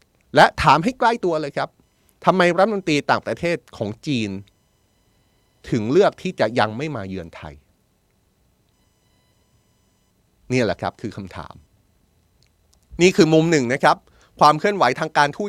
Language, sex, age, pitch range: Thai, male, 30-49, 105-155 Hz